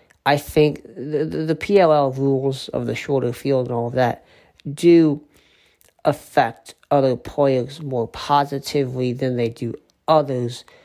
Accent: American